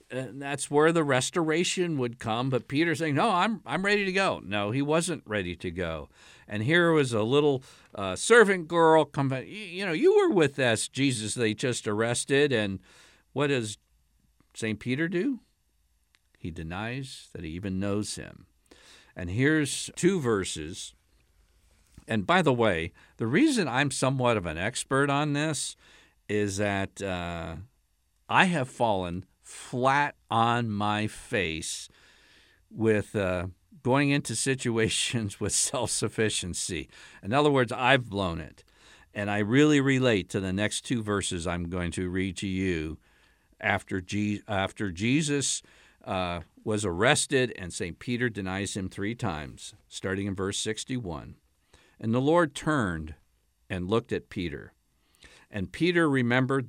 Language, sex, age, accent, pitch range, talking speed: English, male, 50-69, American, 95-140 Hz, 145 wpm